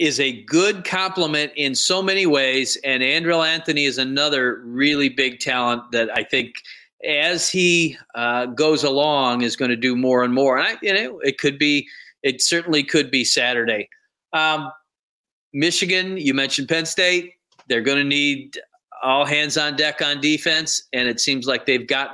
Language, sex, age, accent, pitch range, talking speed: English, male, 40-59, American, 125-160 Hz, 175 wpm